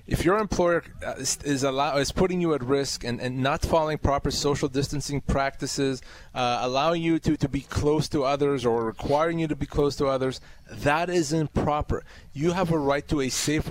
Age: 30-49